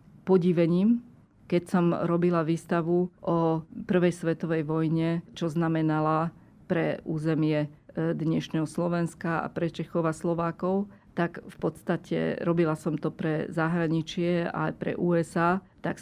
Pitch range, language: 160-180 Hz, Slovak